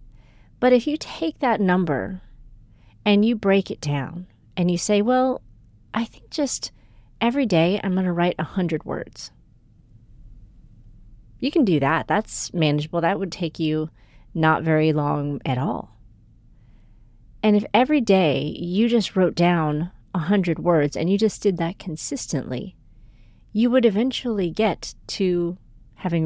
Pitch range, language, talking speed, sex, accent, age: 120-185 Hz, English, 150 wpm, female, American, 30-49